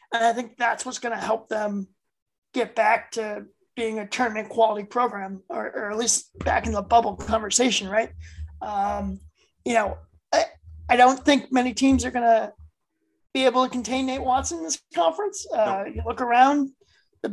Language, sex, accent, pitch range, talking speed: English, male, American, 200-265 Hz, 185 wpm